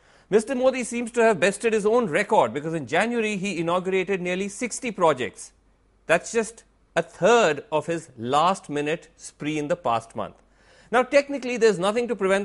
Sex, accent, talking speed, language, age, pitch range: male, Indian, 170 wpm, English, 40-59, 160-210 Hz